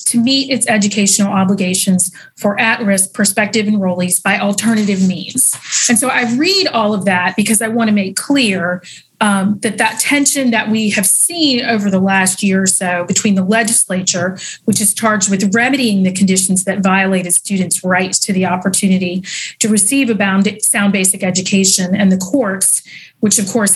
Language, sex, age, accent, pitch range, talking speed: English, female, 30-49, American, 185-220 Hz, 175 wpm